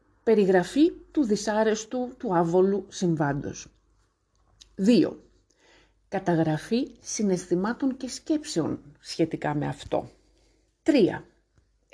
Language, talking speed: Greek, 75 wpm